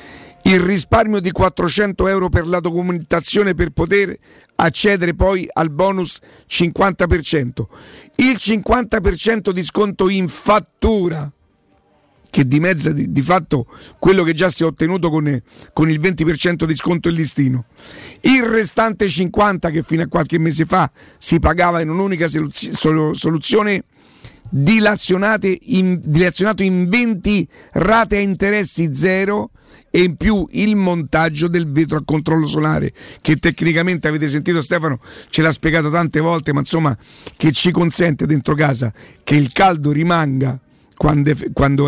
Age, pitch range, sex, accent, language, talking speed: 50-69, 155-190 Hz, male, native, Italian, 130 wpm